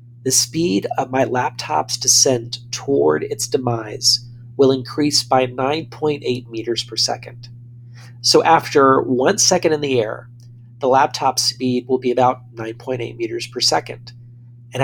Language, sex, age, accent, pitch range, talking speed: English, male, 40-59, American, 120-135 Hz, 140 wpm